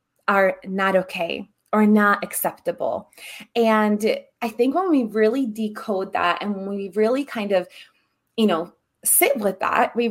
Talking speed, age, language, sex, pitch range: 155 wpm, 20-39, English, female, 190-240 Hz